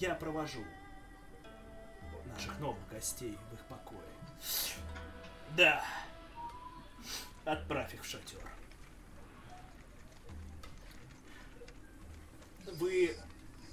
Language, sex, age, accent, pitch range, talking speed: Russian, male, 20-39, native, 100-155 Hz, 60 wpm